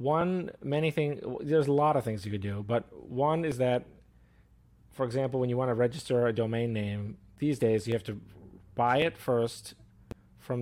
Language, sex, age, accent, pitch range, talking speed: English, male, 30-49, American, 110-130 Hz, 190 wpm